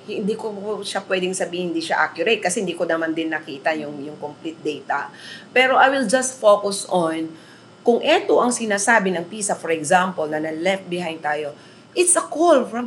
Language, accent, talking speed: Filipino, native, 185 wpm